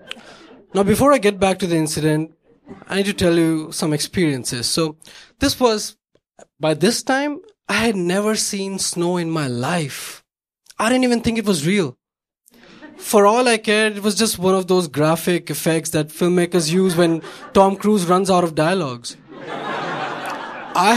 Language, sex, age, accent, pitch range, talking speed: English, male, 20-39, Indian, 150-195 Hz, 170 wpm